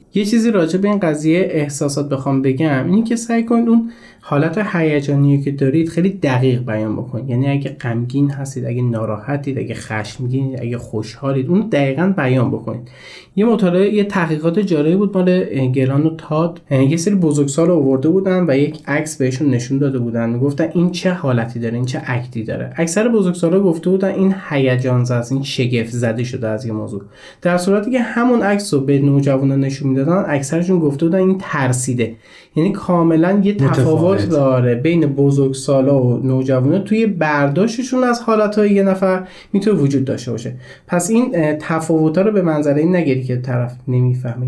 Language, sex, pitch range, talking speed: Persian, male, 125-180 Hz, 170 wpm